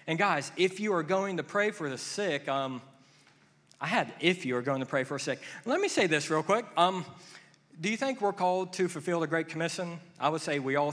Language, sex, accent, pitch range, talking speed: English, male, American, 140-195 Hz, 245 wpm